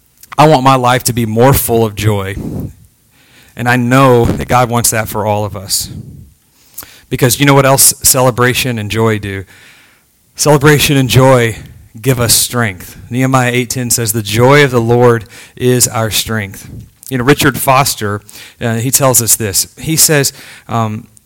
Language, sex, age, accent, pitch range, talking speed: English, male, 40-59, American, 115-135 Hz, 165 wpm